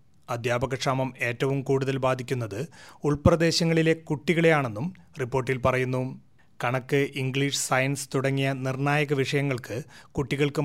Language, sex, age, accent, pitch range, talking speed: Malayalam, male, 30-49, native, 135-155 Hz, 85 wpm